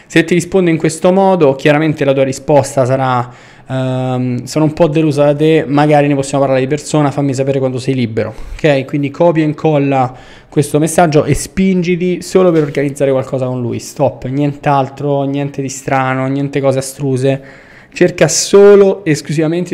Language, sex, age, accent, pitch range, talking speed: Italian, male, 20-39, native, 130-155 Hz, 165 wpm